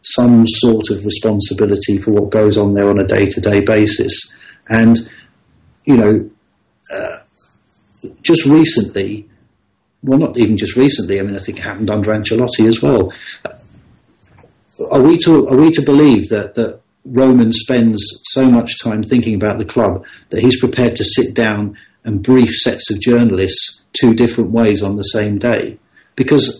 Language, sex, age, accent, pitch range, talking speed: English, male, 40-59, British, 105-125 Hz, 155 wpm